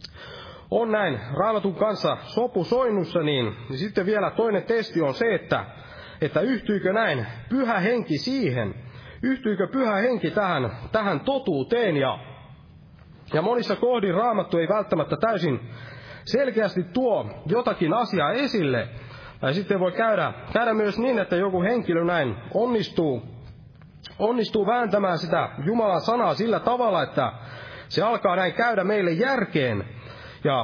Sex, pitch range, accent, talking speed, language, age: male, 145-225 Hz, native, 130 wpm, Finnish, 30-49